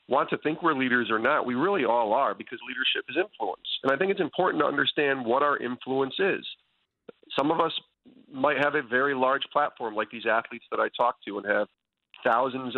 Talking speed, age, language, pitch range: 210 wpm, 40-59, English, 115-135 Hz